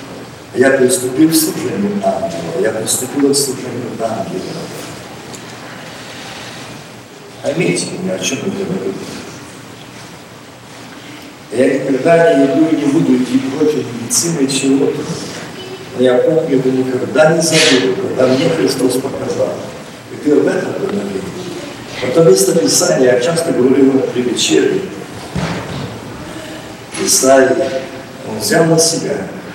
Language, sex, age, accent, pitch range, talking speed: Russian, male, 50-69, native, 125-200 Hz, 120 wpm